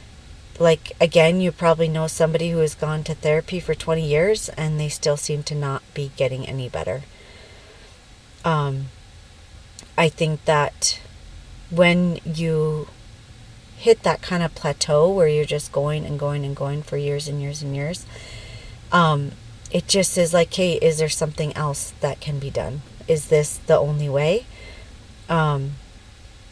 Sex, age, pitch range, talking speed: female, 40-59, 110-165 Hz, 155 wpm